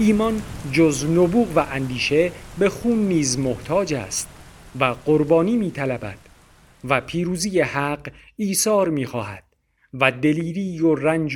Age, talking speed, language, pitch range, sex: 50-69, 120 wpm, Persian, 130-160 Hz, male